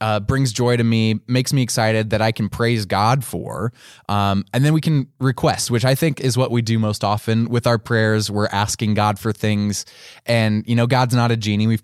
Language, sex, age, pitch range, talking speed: English, male, 20-39, 100-120 Hz, 230 wpm